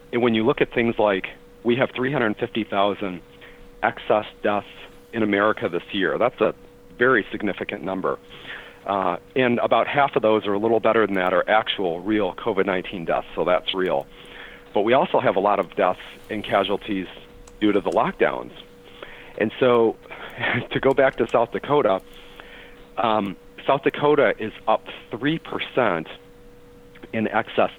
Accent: American